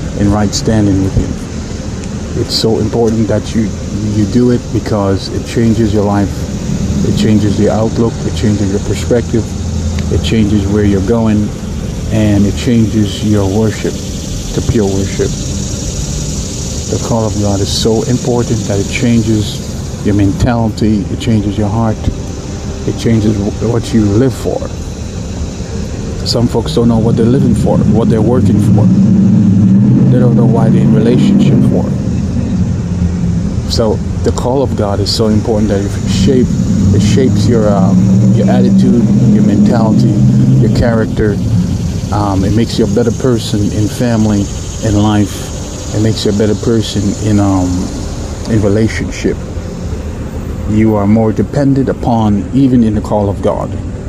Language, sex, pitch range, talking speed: English, male, 95-110 Hz, 150 wpm